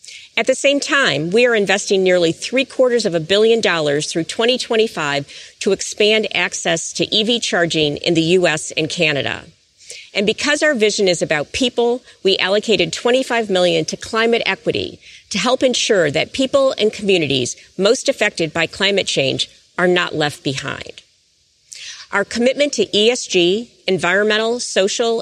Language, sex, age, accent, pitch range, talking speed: English, female, 50-69, American, 170-235 Hz, 150 wpm